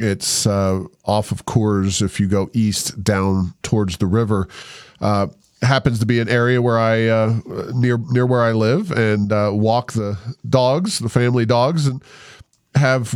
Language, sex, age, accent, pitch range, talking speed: English, male, 40-59, American, 105-130 Hz, 170 wpm